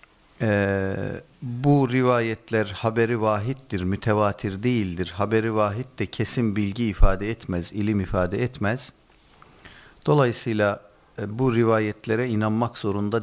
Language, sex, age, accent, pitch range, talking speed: Turkish, male, 50-69, native, 100-130 Hz, 100 wpm